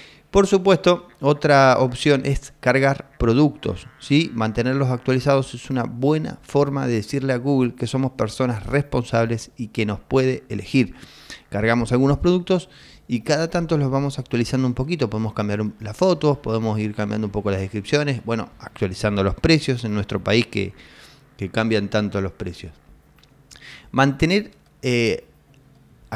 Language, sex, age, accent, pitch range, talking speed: Spanish, male, 30-49, Argentinian, 110-145 Hz, 145 wpm